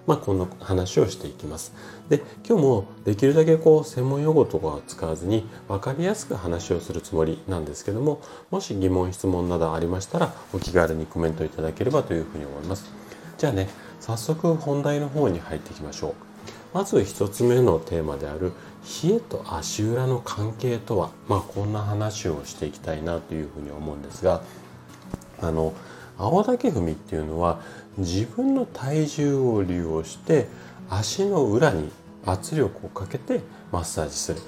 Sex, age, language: male, 40-59, Japanese